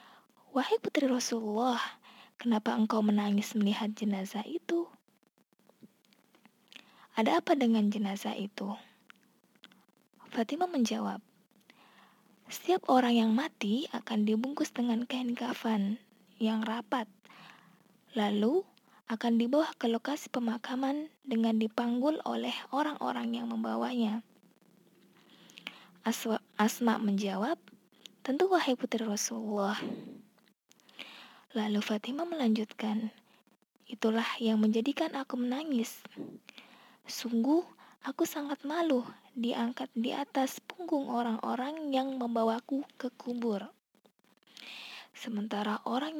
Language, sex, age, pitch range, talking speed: Indonesian, female, 20-39, 220-270 Hz, 90 wpm